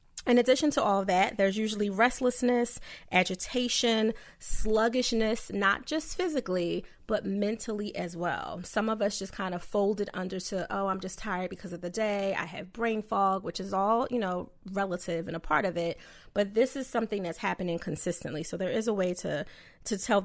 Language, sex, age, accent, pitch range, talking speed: English, female, 30-49, American, 185-225 Hz, 190 wpm